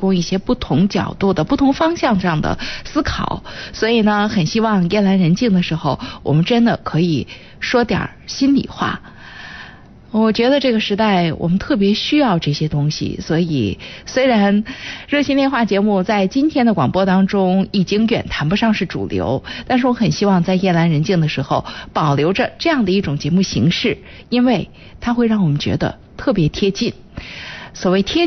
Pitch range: 180-245 Hz